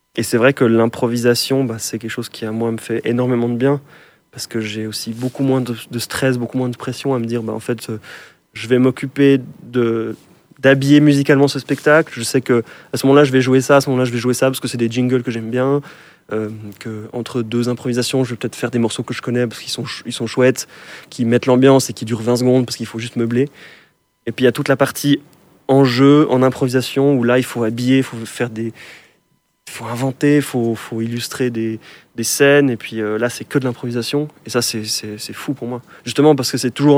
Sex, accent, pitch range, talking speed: male, French, 120-140 Hz, 255 wpm